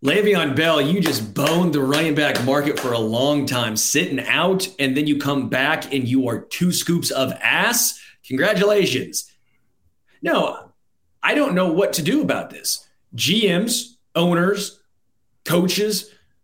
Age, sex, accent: 30-49, male, American